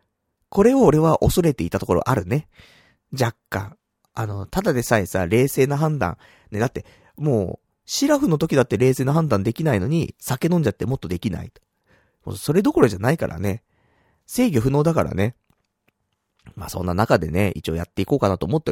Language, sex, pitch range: Japanese, male, 95-145 Hz